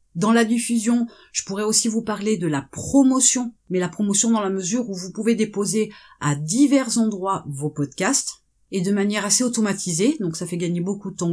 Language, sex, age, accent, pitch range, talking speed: French, female, 30-49, French, 185-250 Hz, 200 wpm